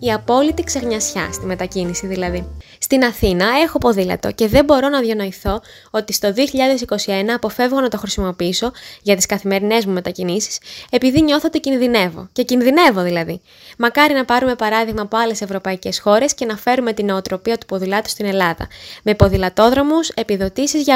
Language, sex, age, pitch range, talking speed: Greek, female, 20-39, 195-255 Hz, 155 wpm